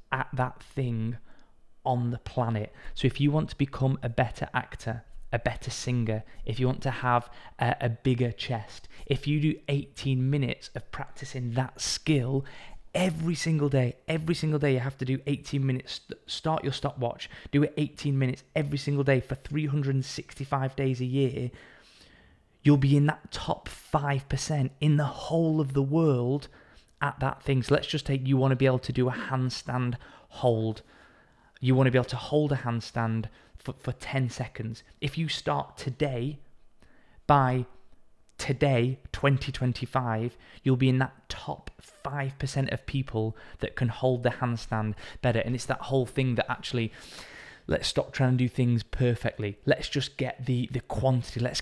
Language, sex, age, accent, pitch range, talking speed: English, male, 20-39, British, 120-145 Hz, 170 wpm